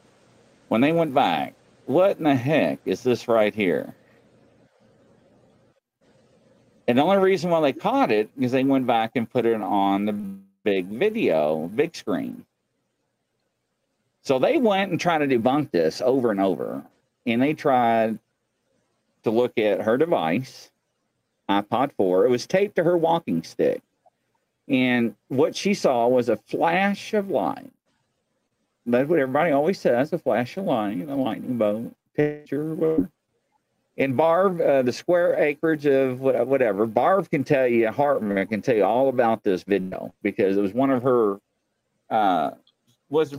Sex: male